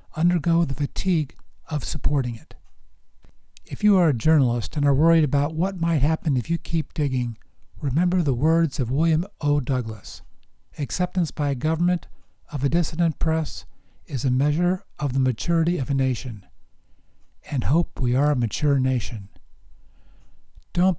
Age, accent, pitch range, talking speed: 60-79, American, 125-165 Hz, 155 wpm